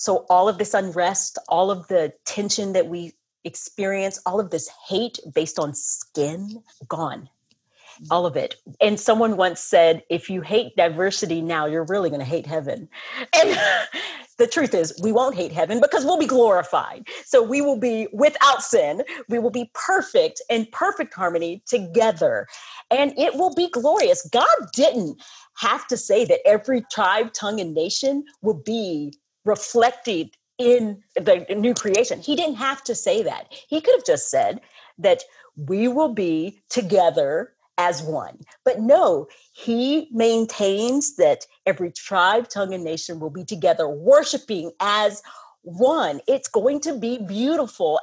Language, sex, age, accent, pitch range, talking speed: English, female, 40-59, American, 180-280 Hz, 155 wpm